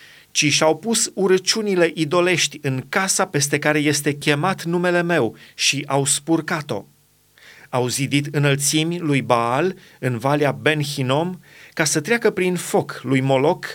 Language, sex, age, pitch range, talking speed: Romanian, male, 30-49, 135-175 Hz, 135 wpm